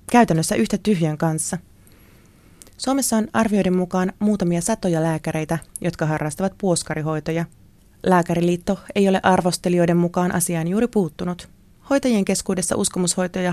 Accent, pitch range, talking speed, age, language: native, 165-200 Hz, 110 wpm, 30-49, Finnish